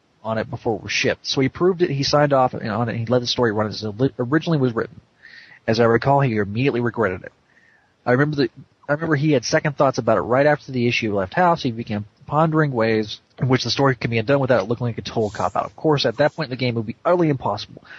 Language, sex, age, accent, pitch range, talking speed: English, male, 30-49, American, 110-140 Hz, 275 wpm